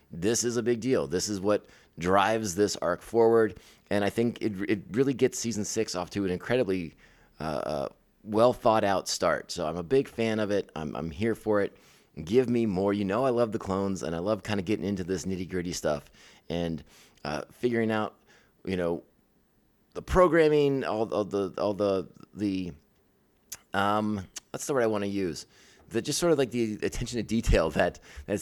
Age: 30-49